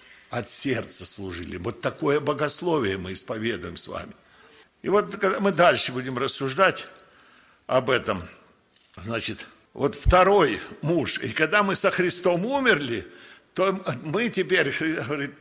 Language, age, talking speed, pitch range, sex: Russian, 60-79, 125 wpm, 135-195 Hz, male